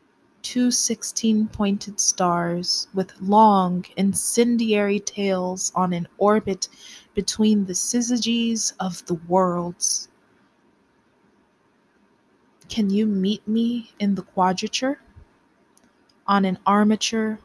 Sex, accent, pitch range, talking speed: female, American, 185-225 Hz, 95 wpm